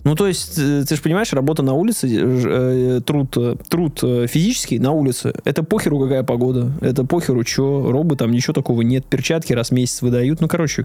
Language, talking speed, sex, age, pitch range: Russian, 175 wpm, male, 20-39, 125-155 Hz